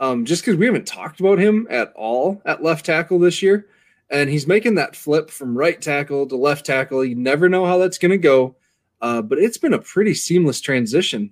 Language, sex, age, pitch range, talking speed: English, male, 20-39, 125-160 Hz, 215 wpm